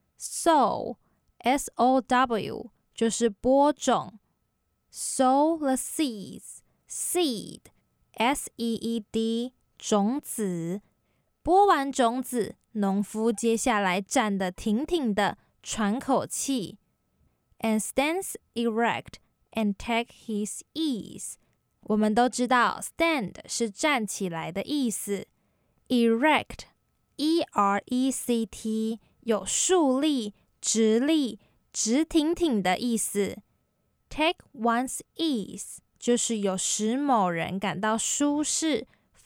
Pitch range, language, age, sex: 215-275 Hz, Chinese, 10-29, female